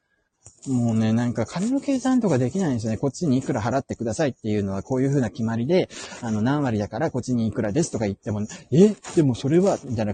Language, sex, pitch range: Japanese, male, 105-140 Hz